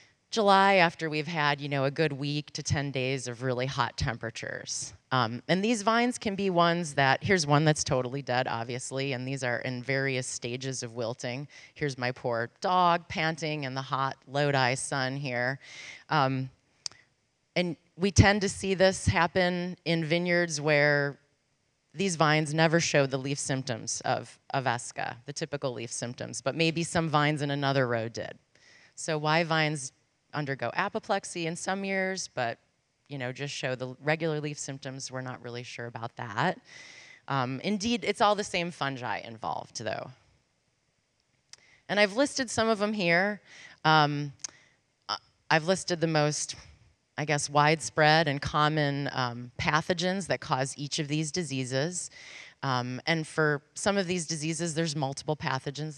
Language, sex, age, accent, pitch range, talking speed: English, female, 30-49, American, 130-165 Hz, 160 wpm